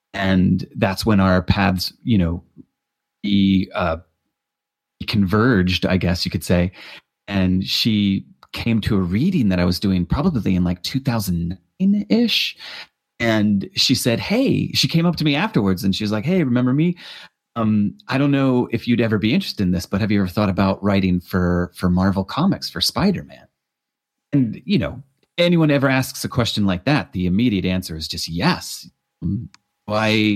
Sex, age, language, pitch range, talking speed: male, 30-49, English, 90-105 Hz, 175 wpm